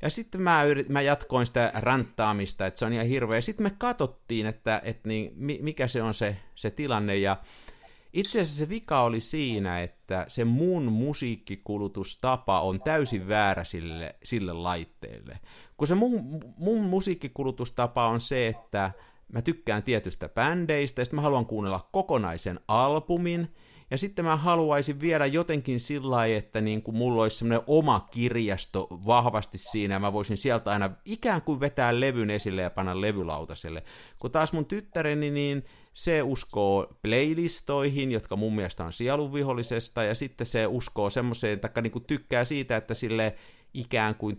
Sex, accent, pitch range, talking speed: male, native, 105-145 Hz, 160 wpm